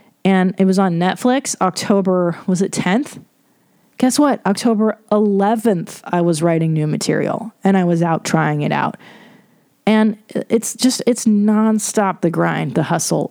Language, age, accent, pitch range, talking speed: English, 20-39, American, 185-240 Hz, 155 wpm